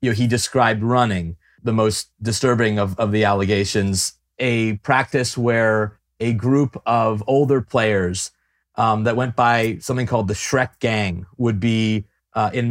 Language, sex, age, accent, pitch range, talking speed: English, male, 30-49, American, 105-125 Hz, 155 wpm